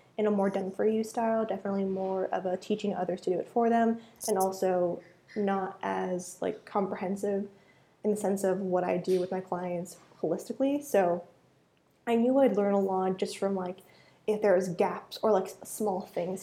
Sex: female